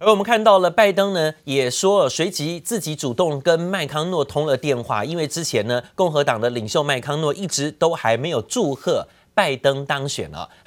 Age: 30-49